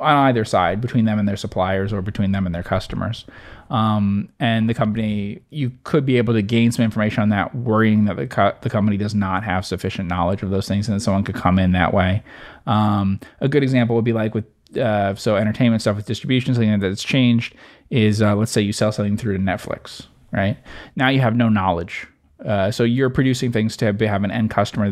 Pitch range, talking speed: 100-115 Hz, 220 wpm